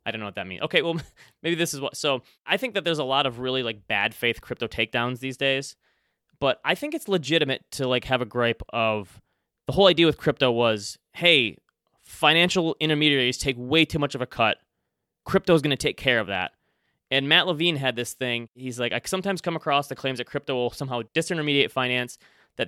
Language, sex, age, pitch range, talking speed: English, male, 20-39, 120-145 Hz, 220 wpm